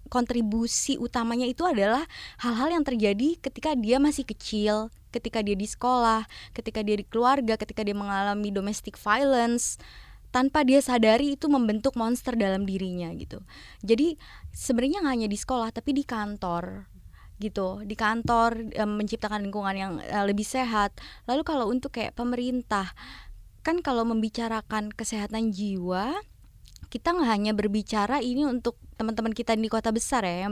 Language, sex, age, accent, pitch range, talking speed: Indonesian, female, 20-39, native, 205-255 Hz, 145 wpm